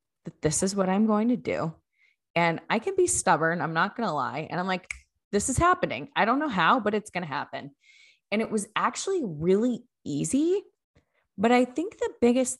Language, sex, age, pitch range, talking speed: English, female, 20-39, 155-220 Hz, 210 wpm